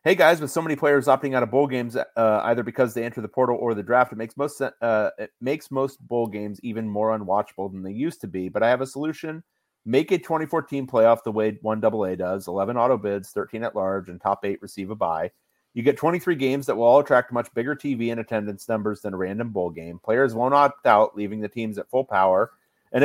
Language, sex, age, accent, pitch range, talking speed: English, male, 30-49, American, 105-135 Hz, 240 wpm